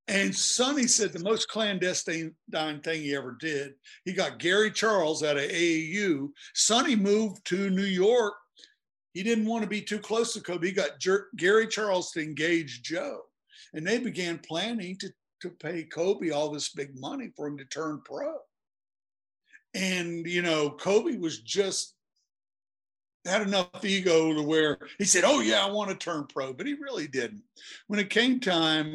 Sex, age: male, 60-79